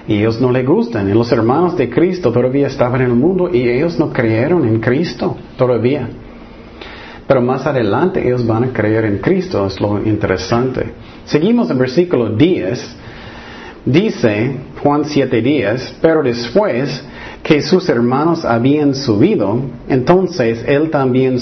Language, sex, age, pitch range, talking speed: Spanish, male, 40-59, 120-150 Hz, 145 wpm